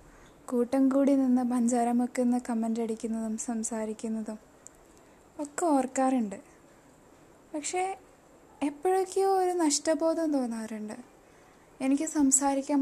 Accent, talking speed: native, 80 wpm